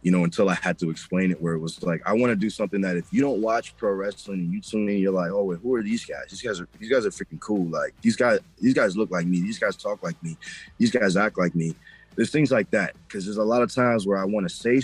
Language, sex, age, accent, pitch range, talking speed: English, male, 20-39, American, 95-130 Hz, 310 wpm